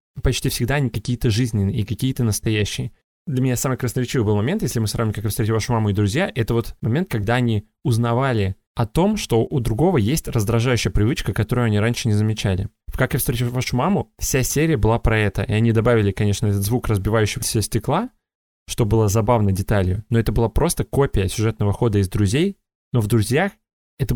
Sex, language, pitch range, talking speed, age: male, Russian, 105-125 Hz, 200 wpm, 20-39